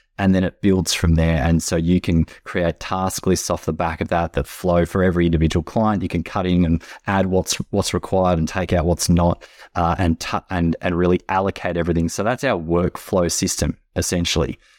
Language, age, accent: English, 20-39, Australian